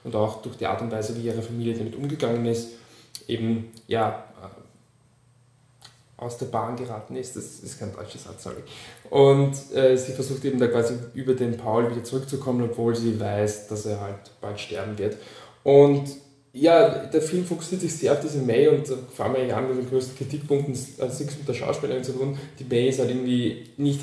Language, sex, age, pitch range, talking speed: German, male, 20-39, 115-140 Hz, 200 wpm